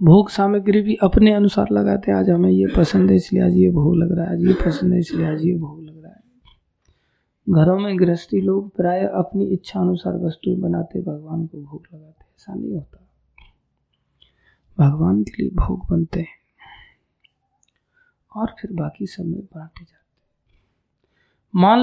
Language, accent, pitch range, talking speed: Hindi, native, 160-190 Hz, 165 wpm